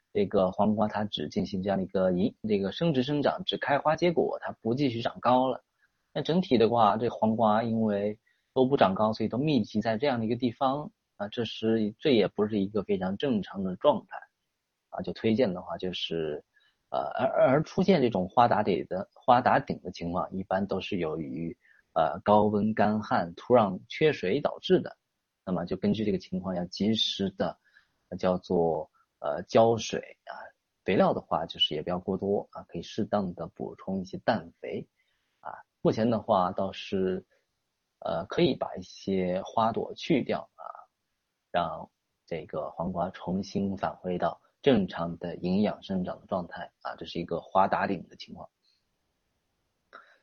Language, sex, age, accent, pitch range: Chinese, male, 30-49, native, 95-140 Hz